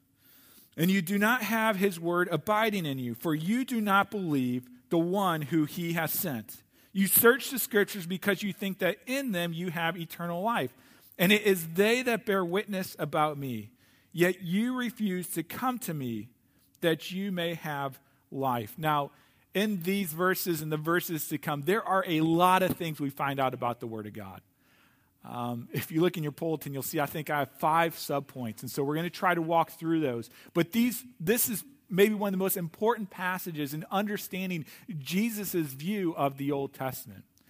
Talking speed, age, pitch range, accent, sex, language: 195 wpm, 40-59, 145-200 Hz, American, male, English